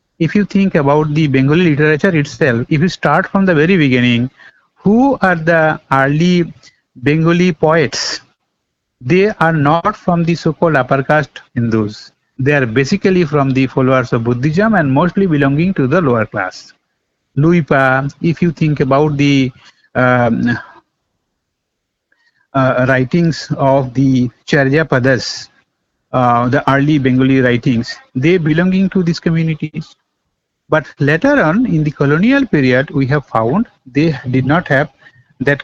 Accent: Indian